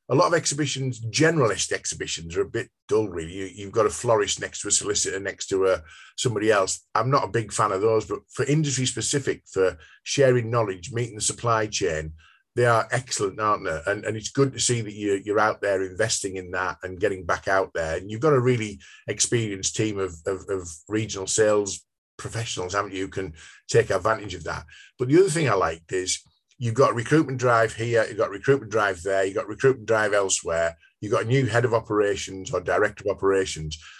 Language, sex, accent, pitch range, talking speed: English, male, British, 100-130 Hz, 220 wpm